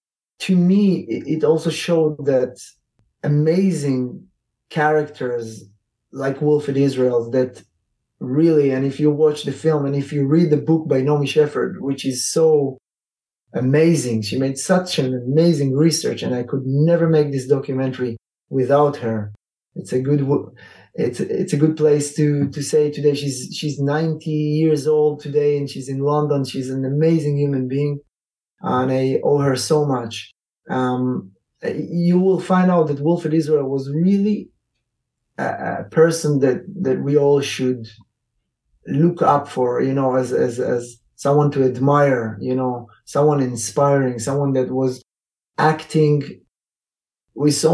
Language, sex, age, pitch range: English, male, 20-39, 130-155 Hz